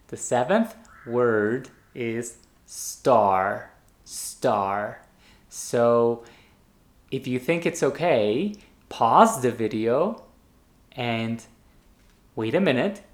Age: 20-39